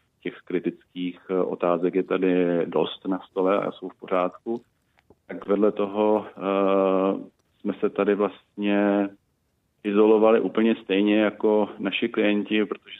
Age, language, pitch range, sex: 40-59, Czech, 90-100 Hz, male